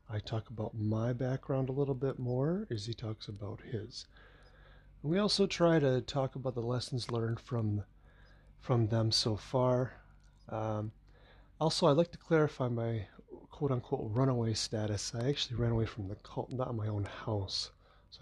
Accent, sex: American, male